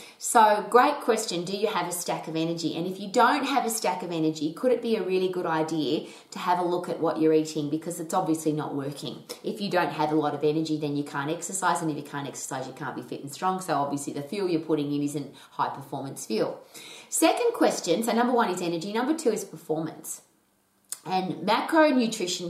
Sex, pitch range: female, 155-195 Hz